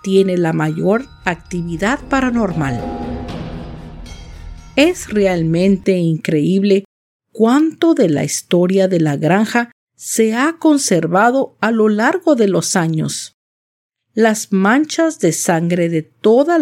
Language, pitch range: Spanish, 165-240 Hz